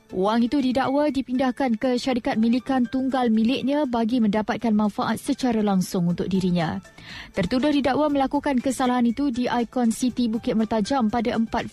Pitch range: 215-255 Hz